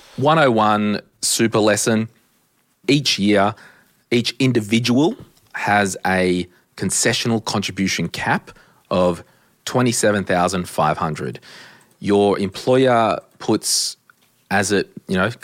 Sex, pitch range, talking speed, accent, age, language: male, 95-120 Hz, 85 wpm, Australian, 30-49, English